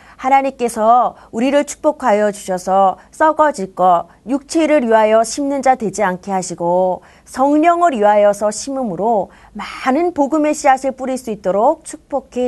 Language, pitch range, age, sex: Korean, 190-275 Hz, 30-49, female